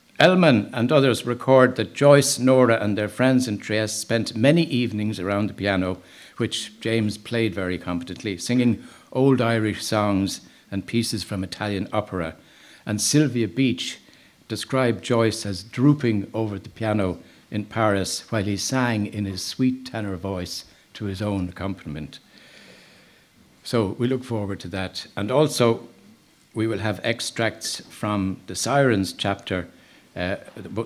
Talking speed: 140 wpm